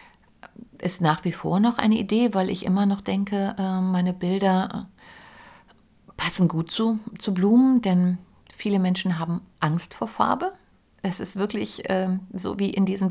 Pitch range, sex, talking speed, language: 175-210 Hz, female, 150 wpm, German